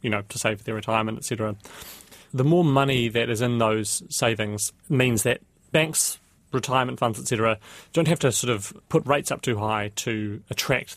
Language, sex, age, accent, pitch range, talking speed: English, male, 30-49, British, 110-135 Hz, 190 wpm